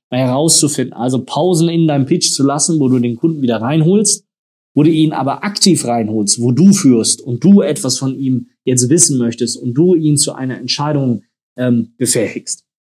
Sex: male